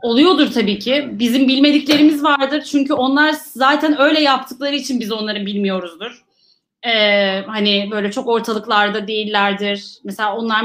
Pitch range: 205-275 Hz